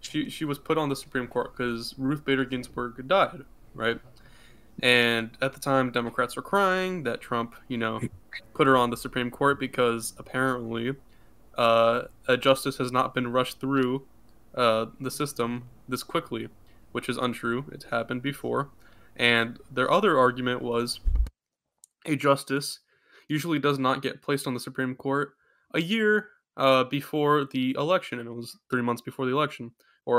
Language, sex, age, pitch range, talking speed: English, male, 10-29, 120-140 Hz, 165 wpm